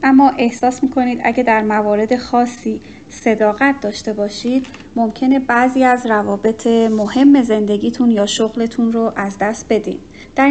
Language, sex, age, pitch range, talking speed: Persian, female, 30-49, 215-260 Hz, 130 wpm